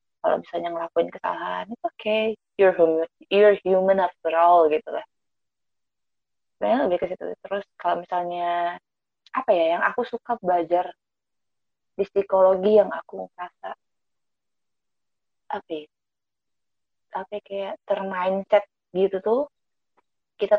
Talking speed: 120 wpm